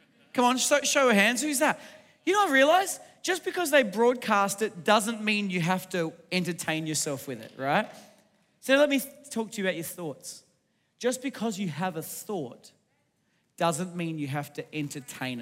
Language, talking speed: English, 190 wpm